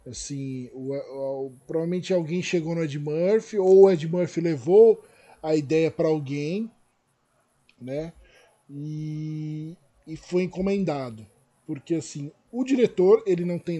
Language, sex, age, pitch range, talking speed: Portuguese, male, 20-39, 155-200 Hz, 135 wpm